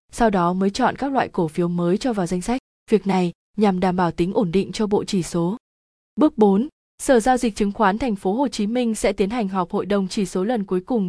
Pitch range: 185-230 Hz